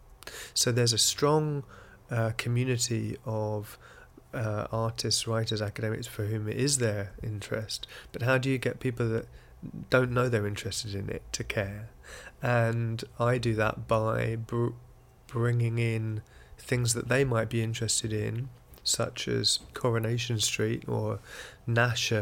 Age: 30-49